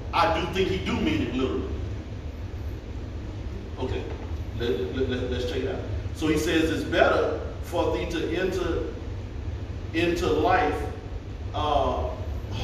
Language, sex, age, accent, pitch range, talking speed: English, male, 40-59, American, 90-110 Hz, 130 wpm